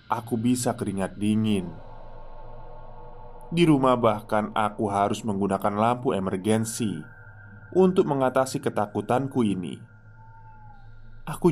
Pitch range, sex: 105-125 Hz, male